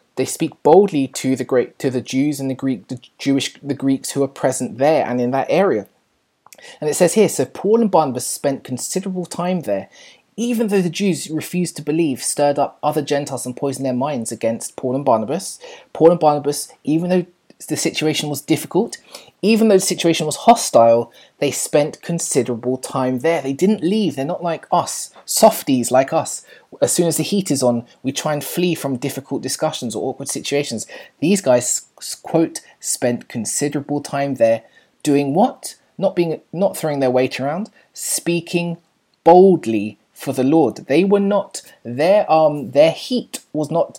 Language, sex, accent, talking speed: English, male, British, 180 wpm